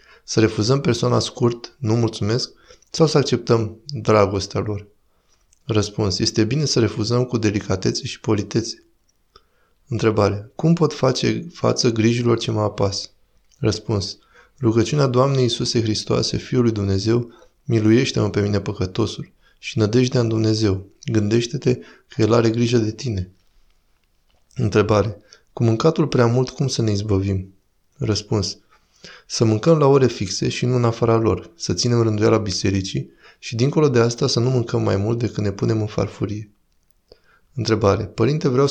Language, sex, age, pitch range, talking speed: Romanian, male, 20-39, 105-125 Hz, 145 wpm